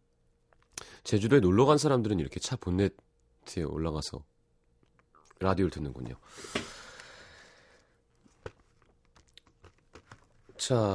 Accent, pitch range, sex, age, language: native, 85-130 Hz, male, 30-49, Korean